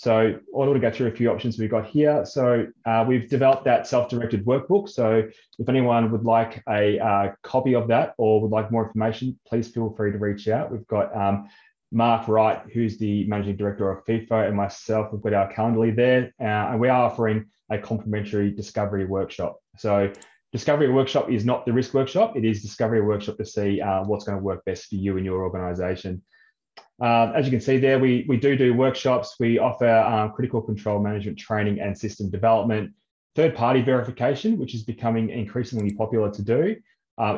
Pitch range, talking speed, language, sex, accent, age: 105-120 Hz, 200 wpm, English, male, Australian, 20-39